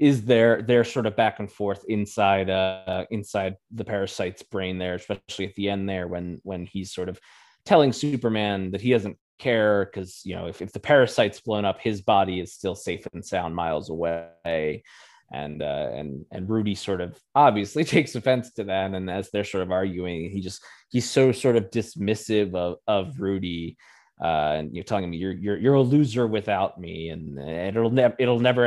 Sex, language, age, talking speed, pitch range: male, English, 20-39, 195 wpm, 90-110 Hz